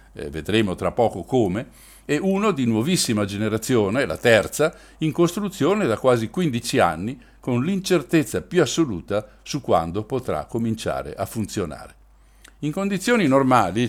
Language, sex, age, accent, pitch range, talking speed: Italian, male, 60-79, native, 100-140 Hz, 135 wpm